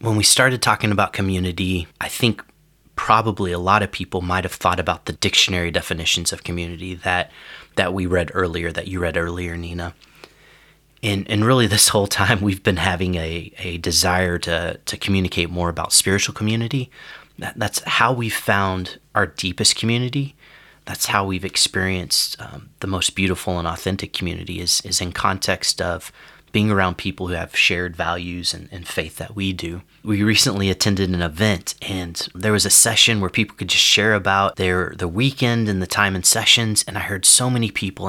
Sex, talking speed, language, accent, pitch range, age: male, 185 wpm, English, American, 90-105 Hz, 30-49